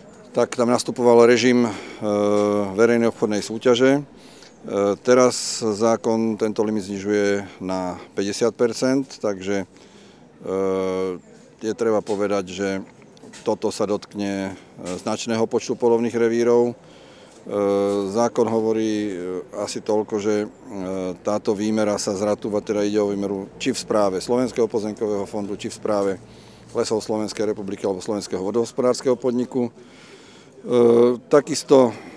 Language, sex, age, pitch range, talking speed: Slovak, male, 40-59, 100-115 Hz, 105 wpm